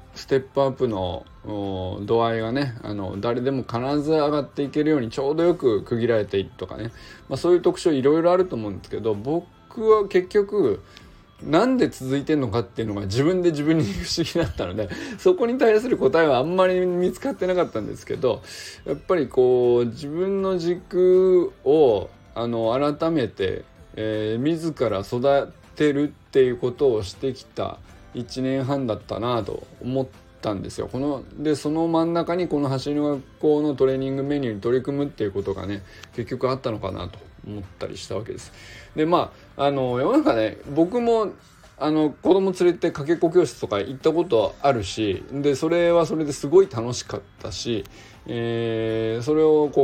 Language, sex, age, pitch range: Japanese, male, 20-39, 110-165 Hz